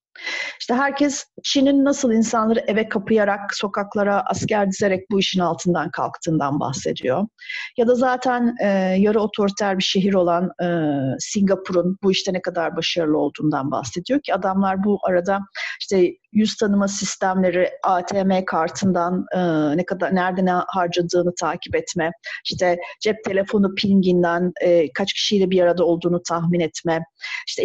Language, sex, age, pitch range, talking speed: Turkish, female, 40-59, 175-215 Hz, 140 wpm